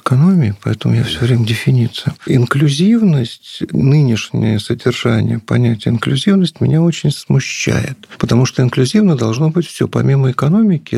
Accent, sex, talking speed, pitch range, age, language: native, male, 120 wpm, 115-165 Hz, 40-59, Russian